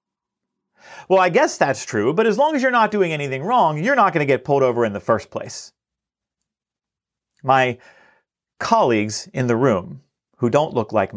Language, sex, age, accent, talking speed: English, male, 40-59, American, 185 wpm